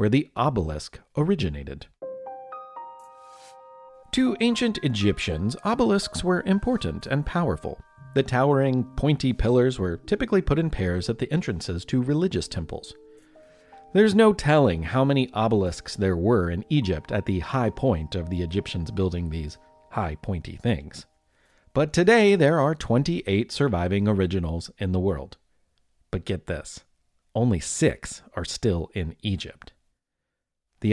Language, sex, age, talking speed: English, male, 40-59, 135 wpm